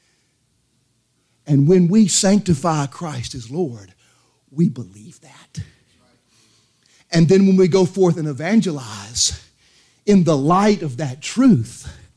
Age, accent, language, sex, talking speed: 40-59, American, English, male, 120 wpm